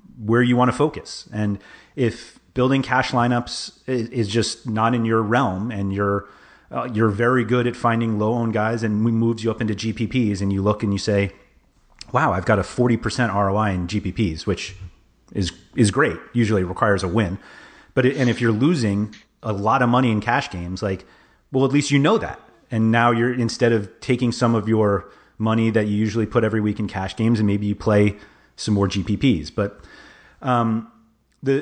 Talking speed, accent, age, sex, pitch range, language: 200 wpm, American, 30-49, male, 100-120 Hz, English